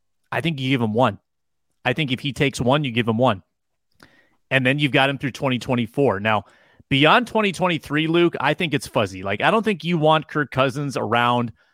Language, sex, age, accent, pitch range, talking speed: English, male, 30-49, American, 120-160 Hz, 205 wpm